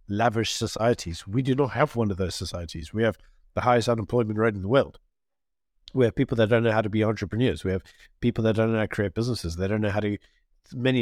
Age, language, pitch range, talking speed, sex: 50-69, English, 100-120 Hz, 245 wpm, male